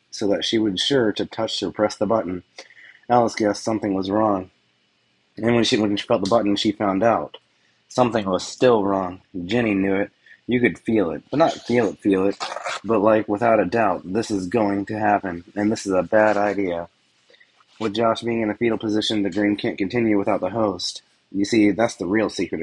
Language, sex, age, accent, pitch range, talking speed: English, male, 30-49, American, 100-115 Hz, 210 wpm